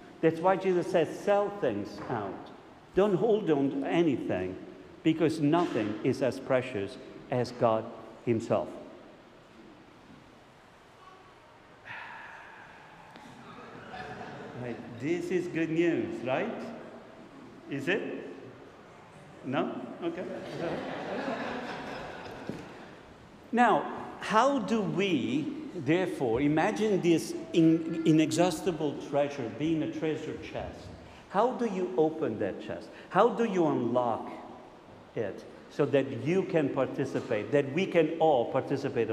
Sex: male